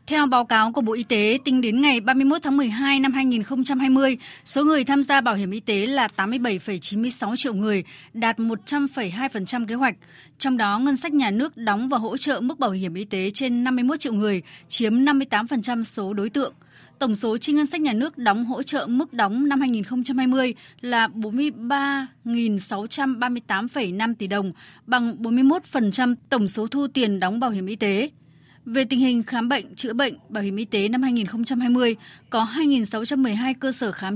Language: Vietnamese